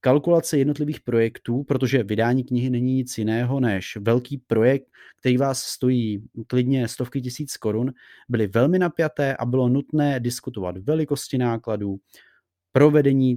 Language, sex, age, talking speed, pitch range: Czech, male, 30-49, 130 wpm, 115-145 Hz